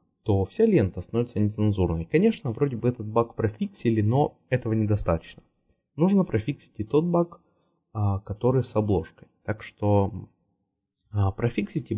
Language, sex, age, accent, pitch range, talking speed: Russian, male, 20-39, native, 95-120 Hz, 125 wpm